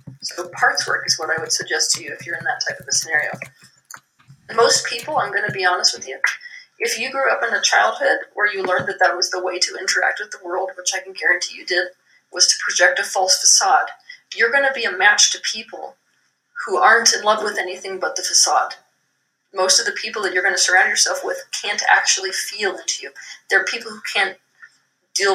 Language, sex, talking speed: English, female, 230 wpm